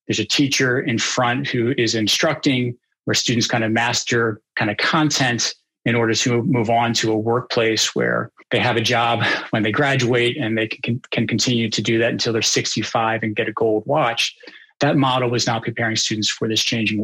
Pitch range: 115-130 Hz